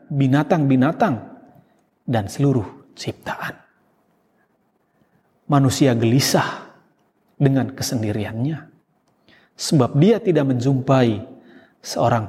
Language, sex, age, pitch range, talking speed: Indonesian, male, 30-49, 130-195 Hz, 65 wpm